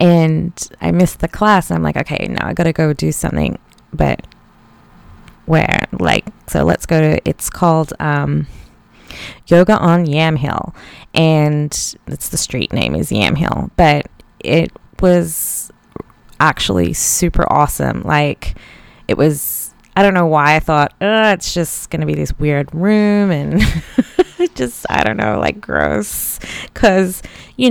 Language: English